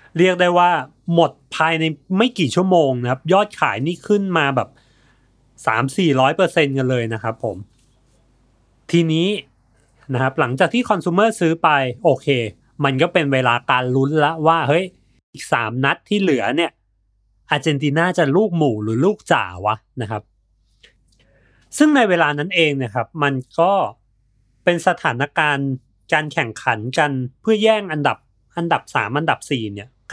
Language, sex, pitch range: Thai, male, 120-170 Hz